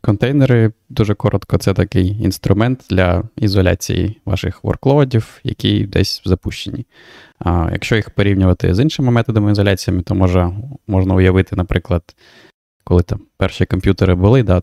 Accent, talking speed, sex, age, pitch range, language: native, 125 wpm, male, 20-39, 90-105 Hz, Ukrainian